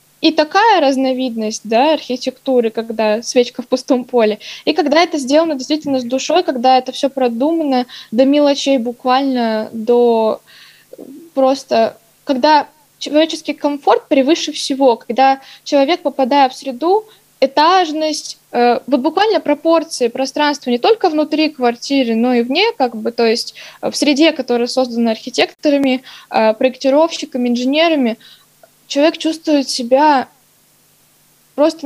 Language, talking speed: Russian, 115 wpm